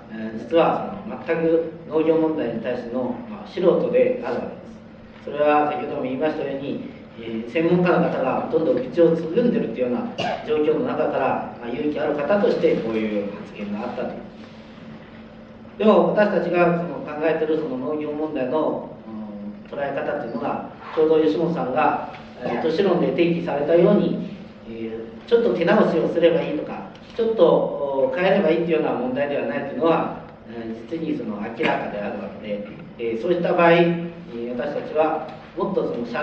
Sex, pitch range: male, 130-180 Hz